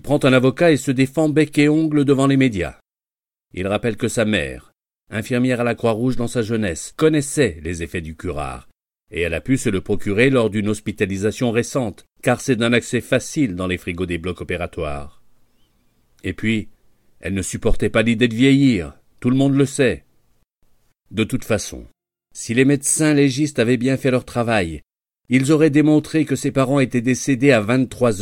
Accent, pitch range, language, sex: French, 100-130 Hz, French, male